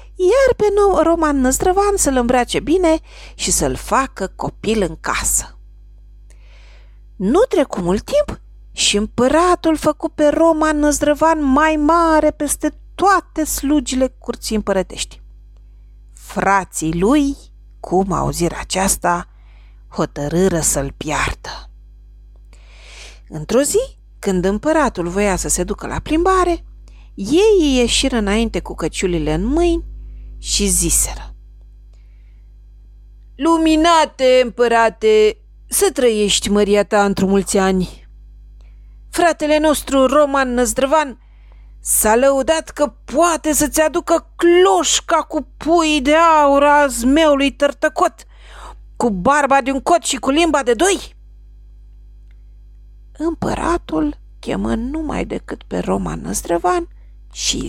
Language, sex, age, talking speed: Romanian, female, 40-59, 105 wpm